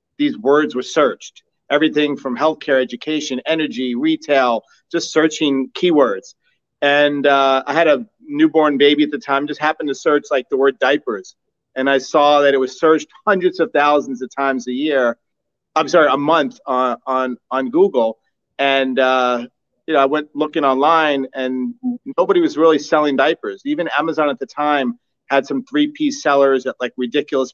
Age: 40-59